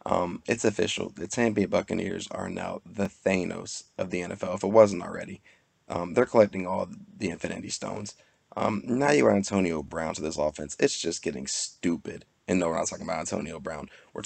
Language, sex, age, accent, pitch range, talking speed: English, male, 20-39, American, 80-95 Hz, 195 wpm